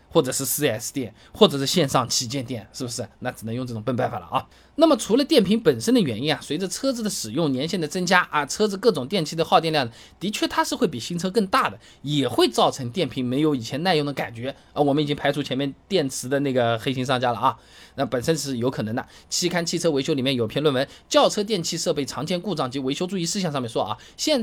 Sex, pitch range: male, 130-205 Hz